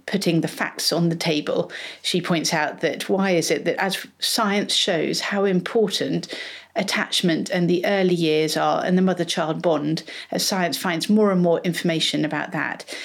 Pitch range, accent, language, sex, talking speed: 165-190 Hz, British, English, female, 175 wpm